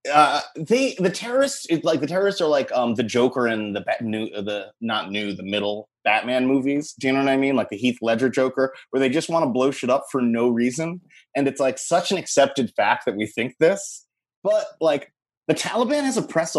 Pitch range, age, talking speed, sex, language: 110-150 Hz, 30-49, 230 wpm, male, English